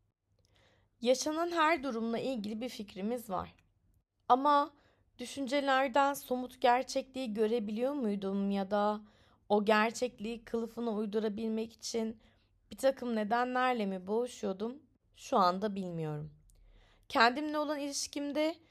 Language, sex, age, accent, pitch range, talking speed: Turkish, female, 30-49, native, 175-245 Hz, 100 wpm